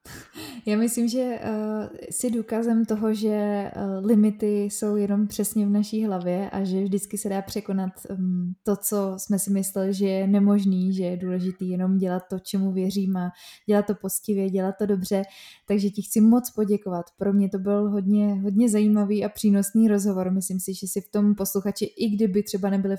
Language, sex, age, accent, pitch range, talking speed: Czech, female, 20-39, native, 190-210 Hz, 180 wpm